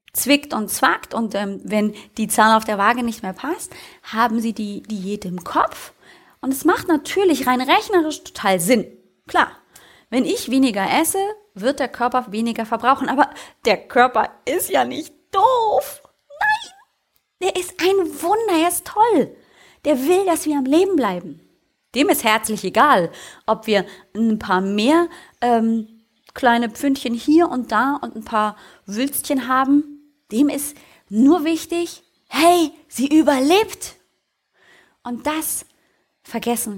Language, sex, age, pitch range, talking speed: German, female, 30-49, 215-310 Hz, 145 wpm